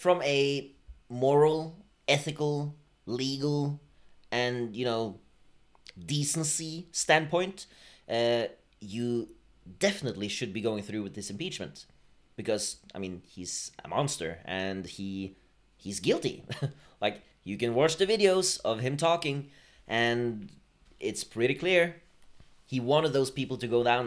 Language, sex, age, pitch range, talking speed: English, male, 30-49, 110-150 Hz, 125 wpm